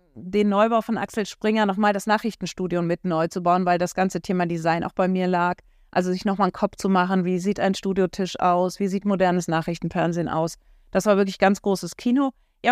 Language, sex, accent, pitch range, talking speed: German, female, German, 175-215 Hz, 210 wpm